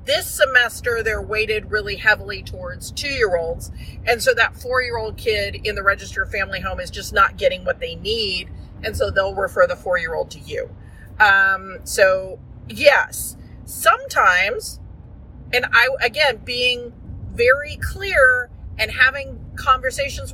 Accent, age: American, 40-59